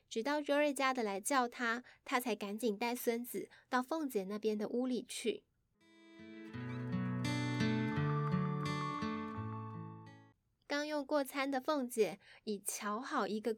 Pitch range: 205-265 Hz